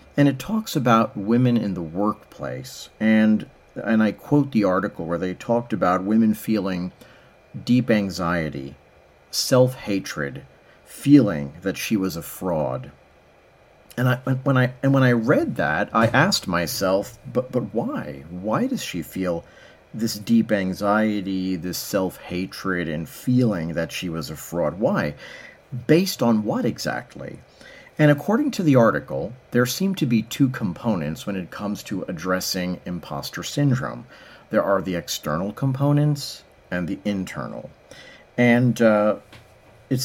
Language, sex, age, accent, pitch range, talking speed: English, male, 40-59, American, 95-130 Hz, 140 wpm